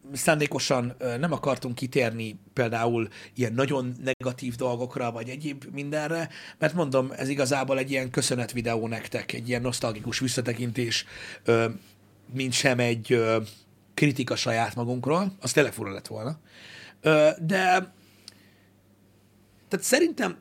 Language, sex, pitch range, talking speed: Hungarian, male, 110-150 Hz, 110 wpm